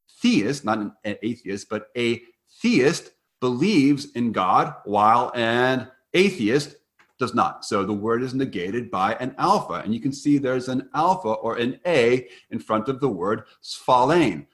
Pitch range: 115-155 Hz